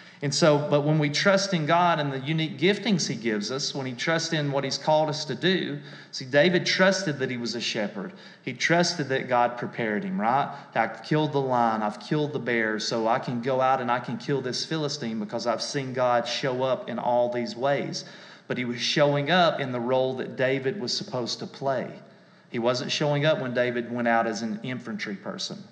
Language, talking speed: English, 220 wpm